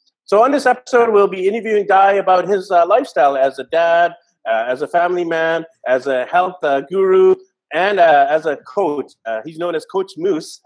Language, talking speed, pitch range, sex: English, 205 wpm, 150-205 Hz, male